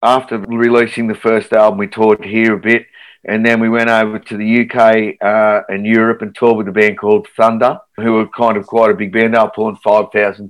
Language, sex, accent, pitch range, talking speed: English, male, Australian, 105-120 Hz, 230 wpm